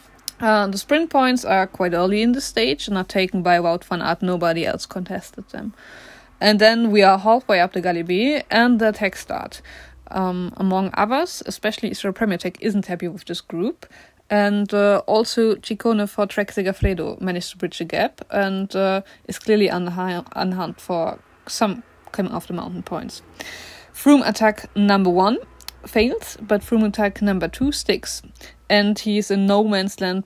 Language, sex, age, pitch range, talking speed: English, female, 20-39, 185-220 Hz, 175 wpm